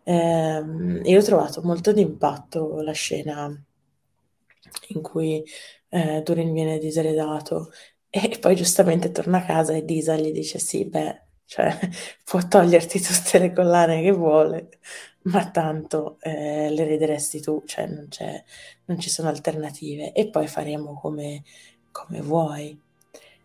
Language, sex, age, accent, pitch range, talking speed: Italian, female, 20-39, native, 160-200 Hz, 135 wpm